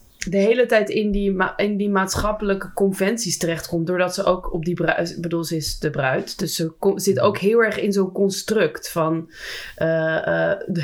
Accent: Dutch